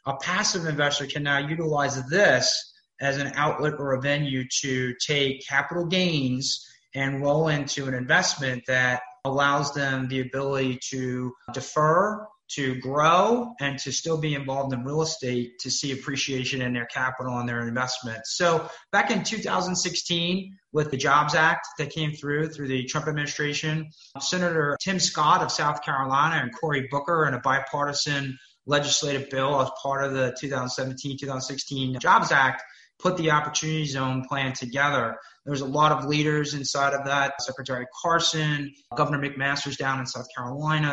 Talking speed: 160 wpm